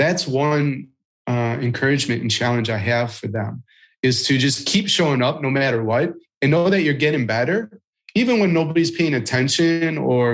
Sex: male